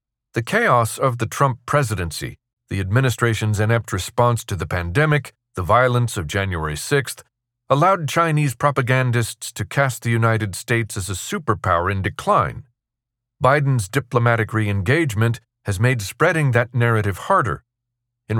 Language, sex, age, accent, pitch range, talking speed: English, male, 40-59, American, 110-130 Hz, 135 wpm